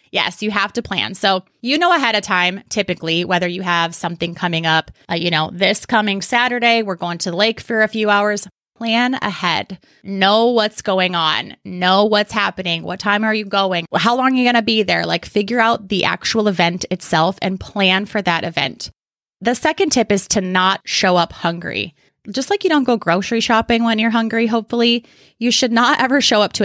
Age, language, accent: 20-39, English, American